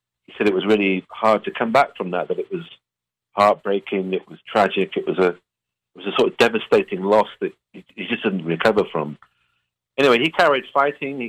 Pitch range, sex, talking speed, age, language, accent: 85-110 Hz, male, 215 wpm, 40-59, English, British